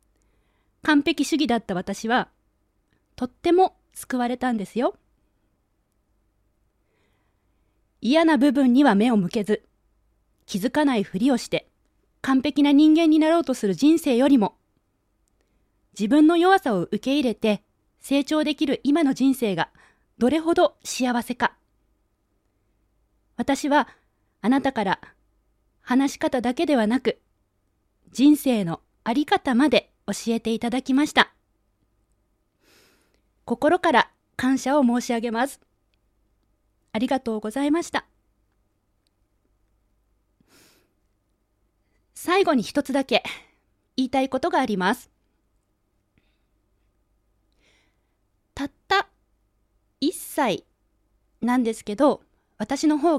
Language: Japanese